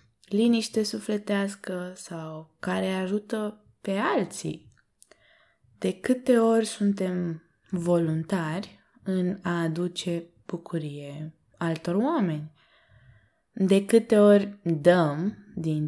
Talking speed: 85 wpm